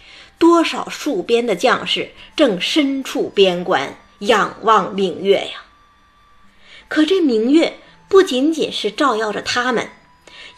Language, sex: Chinese, female